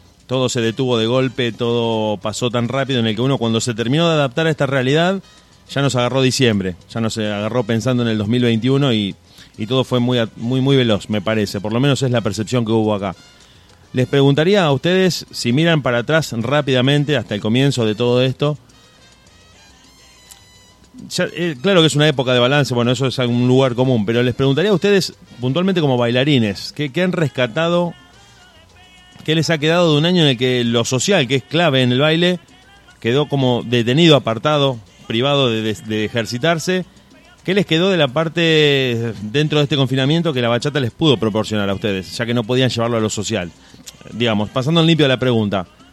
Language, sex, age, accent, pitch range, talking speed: Spanish, male, 30-49, Argentinian, 115-150 Hz, 195 wpm